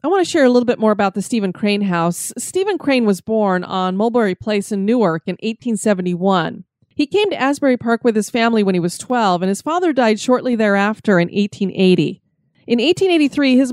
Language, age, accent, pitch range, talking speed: English, 30-49, American, 195-260 Hz, 205 wpm